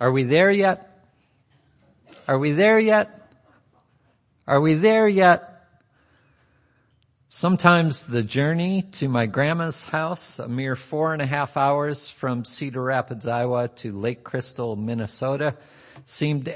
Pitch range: 120-155 Hz